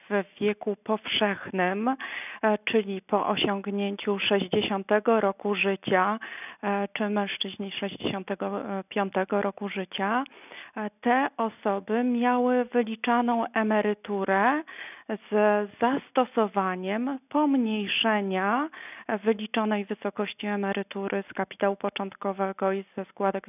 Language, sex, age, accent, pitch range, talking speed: Polish, female, 30-49, native, 195-225 Hz, 80 wpm